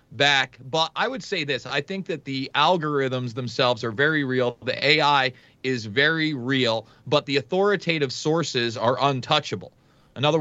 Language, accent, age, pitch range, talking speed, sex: English, American, 40-59, 130-155 Hz, 160 wpm, male